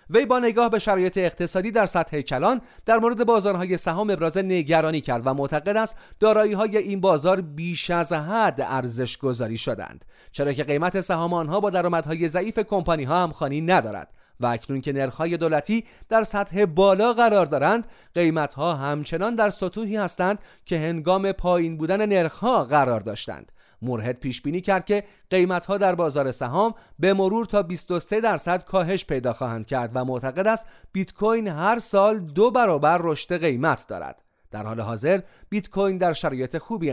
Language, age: Persian, 30-49